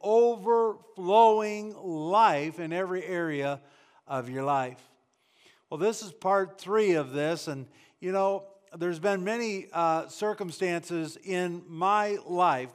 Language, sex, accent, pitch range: English, male, American, 175-215 Hz